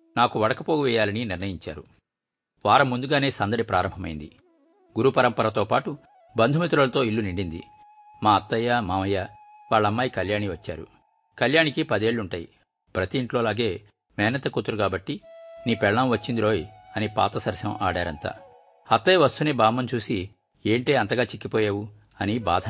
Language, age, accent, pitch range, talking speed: Telugu, 50-69, native, 105-140 Hz, 105 wpm